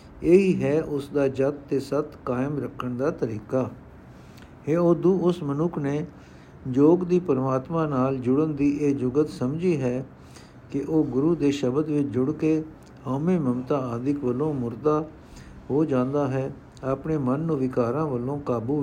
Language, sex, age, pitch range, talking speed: Punjabi, male, 60-79, 125-155 Hz, 155 wpm